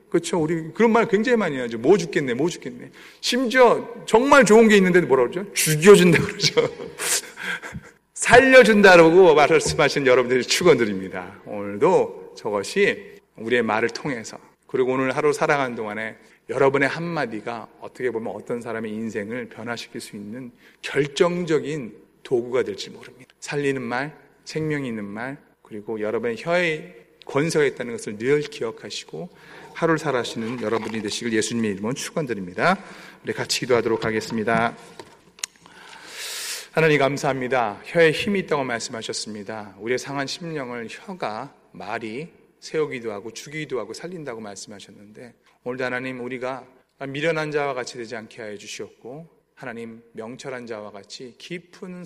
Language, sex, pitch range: Korean, male, 115-180 Hz